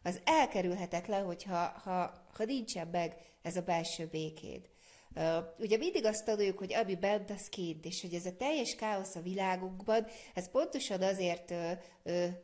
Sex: female